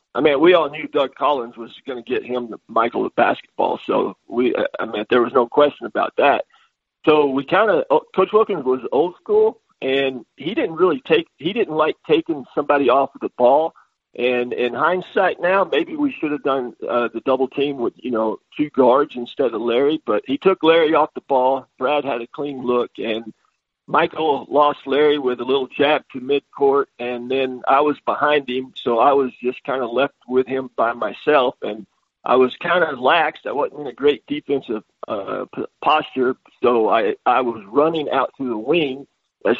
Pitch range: 125-150 Hz